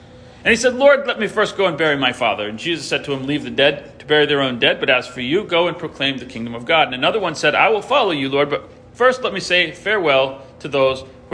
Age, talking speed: 40-59, 285 wpm